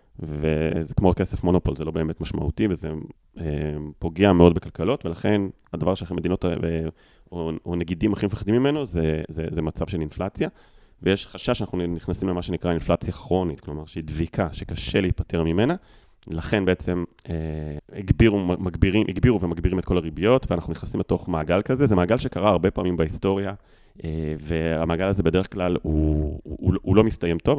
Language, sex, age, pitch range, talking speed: English, male, 30-49, 80-100 Hz, 165 wpm